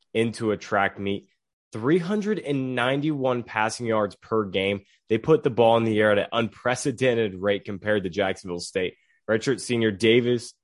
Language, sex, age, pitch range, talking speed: English, male, 20-39, 100-125 Hz, 150 wpm